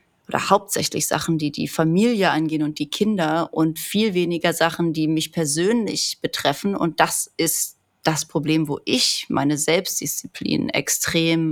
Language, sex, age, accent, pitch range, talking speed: German, female, 30-49, German, 160-185 Hz, 145 wpm